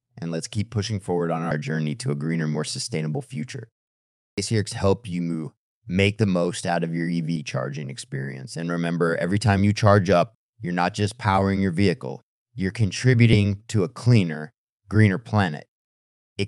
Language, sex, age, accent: English, male, 30-49, American